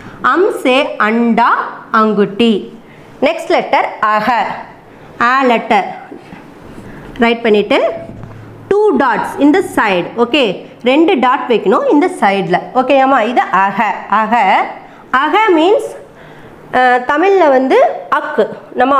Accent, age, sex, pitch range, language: native, 20-39, female, 225-310 Hz, Tamil